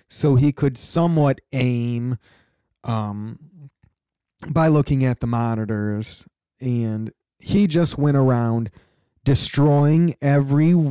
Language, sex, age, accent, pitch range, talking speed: English, male, 20-39, American, 115-145 Hz, 100 wpm